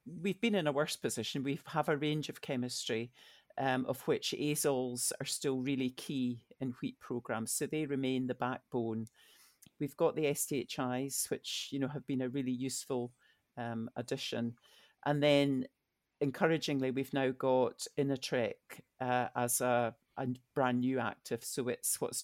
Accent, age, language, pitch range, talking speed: British, 50-69, English, 125-140 Hz, 155 wpm